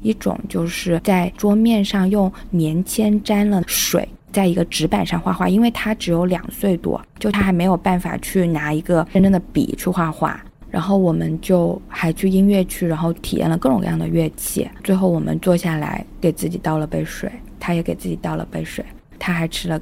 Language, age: Chinese, 20-39